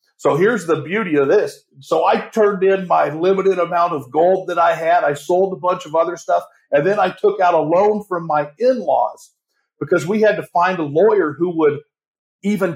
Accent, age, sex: American, 50-69, male